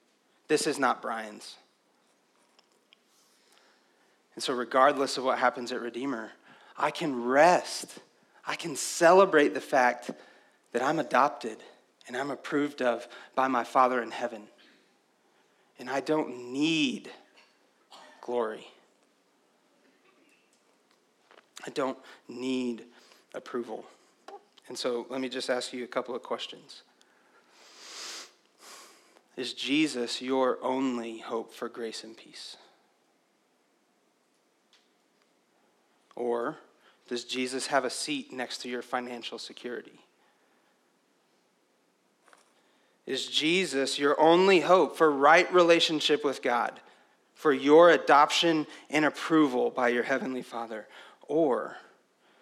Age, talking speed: 30-49, 105 wpm